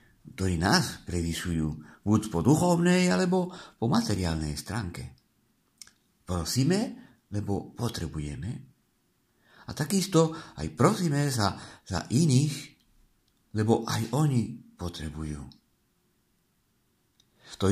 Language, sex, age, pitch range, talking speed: Czech, male, 50-69, 85-130 Hz, 85 wpm